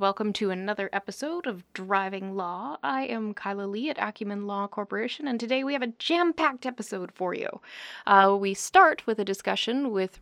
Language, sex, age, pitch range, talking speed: English, female, 20-39, 185-235 Hz, 180 wpm